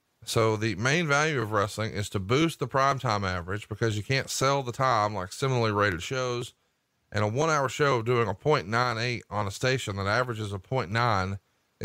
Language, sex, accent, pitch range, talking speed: English, male, American, 110-135 Hz, 195 wpm